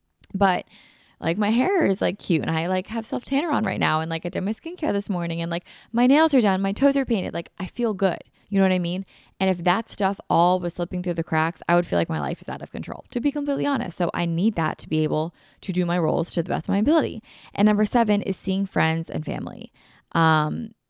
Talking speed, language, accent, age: 265 wpm, English, American, 10-29